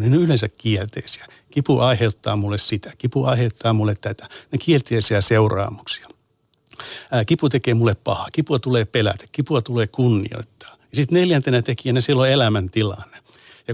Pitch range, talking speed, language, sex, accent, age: 110-140 Hz, 130 wpm, Finnish, male, native, 60-79